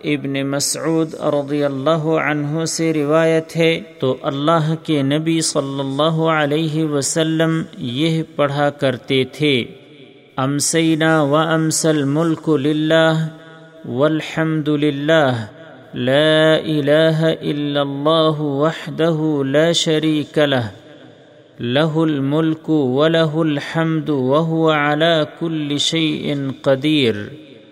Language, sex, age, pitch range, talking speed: Urdu, male, 50-69, 145-160 Hz, 95 wpm